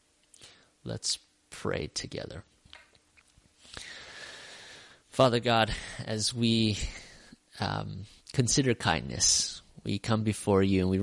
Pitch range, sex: 95-110 Hz, male